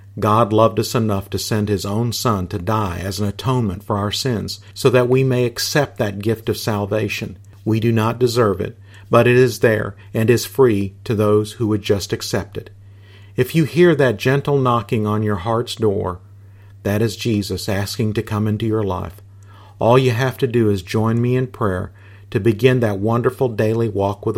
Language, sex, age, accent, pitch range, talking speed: English, male, 50-69, American, 100-120 Hz, 200 wpm